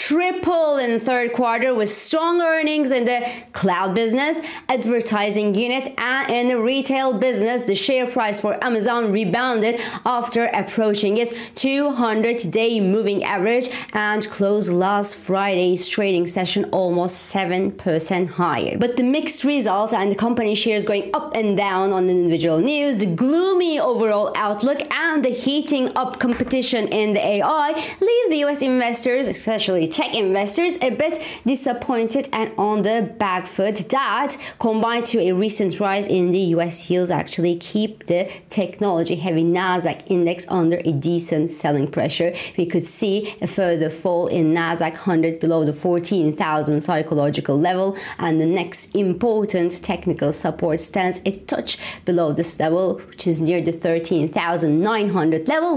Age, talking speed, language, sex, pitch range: 30-49, 145 wpm, English, female, 180-245 Hz